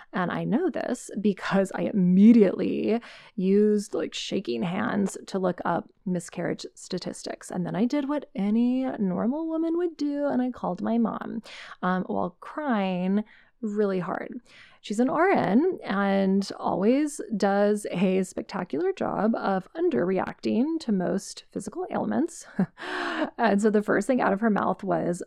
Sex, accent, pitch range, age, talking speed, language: female, American, 180-230 Hz, 20-39, 145 wpm, English